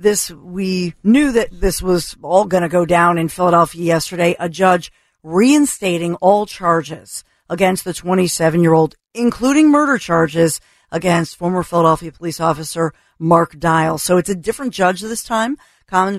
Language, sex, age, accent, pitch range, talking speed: English, female, 50-69, American, 165-185 Hz, 150 wpm